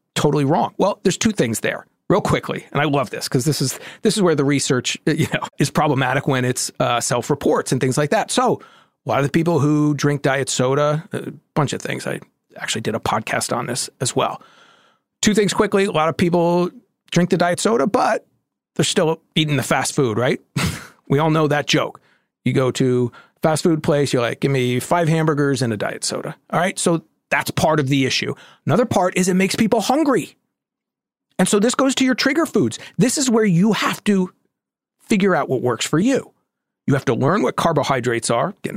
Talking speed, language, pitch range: 215 wpm, English, 140-190 Hz